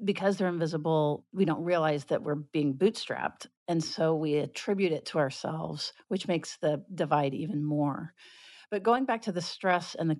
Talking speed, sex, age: 180 wpm, female, 50-69